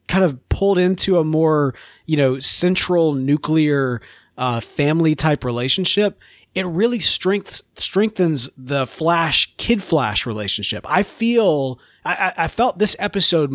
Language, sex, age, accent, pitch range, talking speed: English, male, 30-49, American, 125-175 Hz, 135 wpm